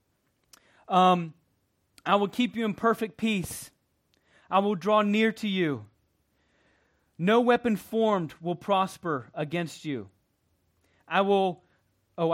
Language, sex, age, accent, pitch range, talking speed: English, male, 30-49, American, 150-215 Hz, 115 wpm